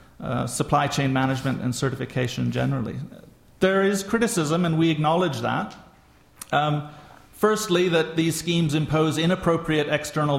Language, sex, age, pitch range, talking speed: English, male, 40-59, 140-170 Hz, 125 wpm